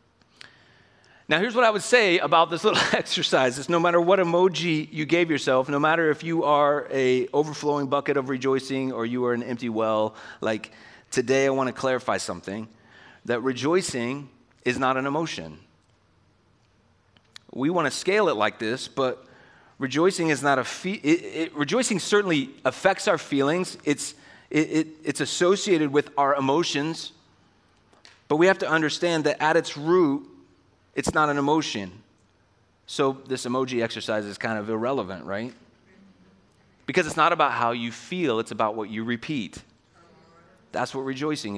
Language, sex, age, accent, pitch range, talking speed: English, male, 30-49, American, 115-155 Hz, 160 wpm